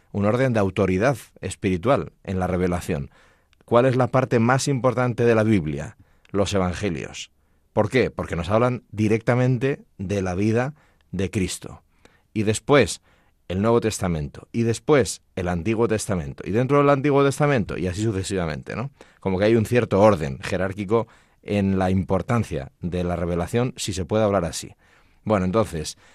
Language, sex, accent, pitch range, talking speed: Spanish, male, Spanish, 90-115 Hz, 160 wpm